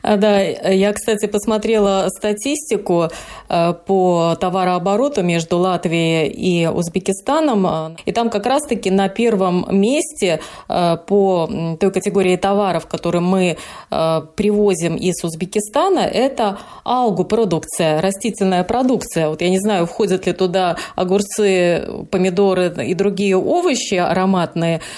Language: Russian